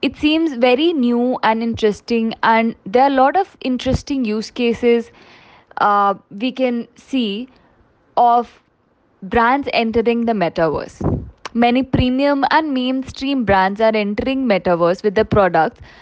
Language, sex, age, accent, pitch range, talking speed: English, female, 20-39, Indian, 200-255 Hz, 130 wpm